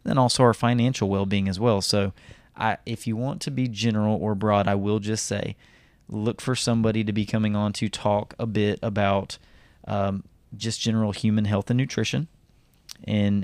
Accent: American